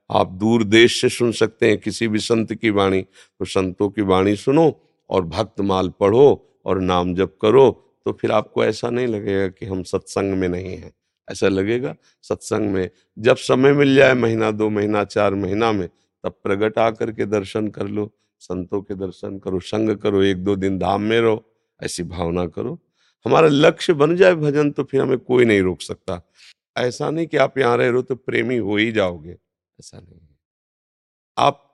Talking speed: 185 wpm